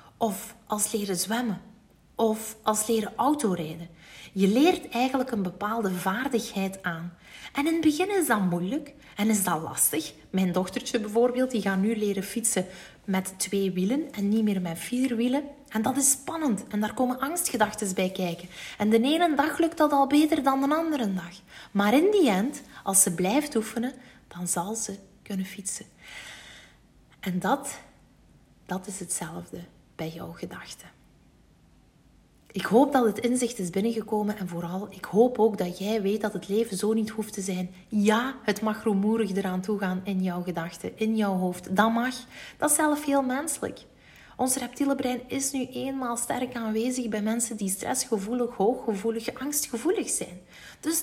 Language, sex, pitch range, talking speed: Dutch, female, 190-255 Hz, 170 wpm